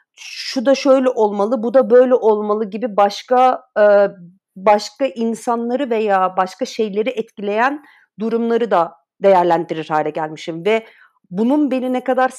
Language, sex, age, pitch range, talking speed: Turkish, female, 50-69, 195-240 Hz, 125 wpm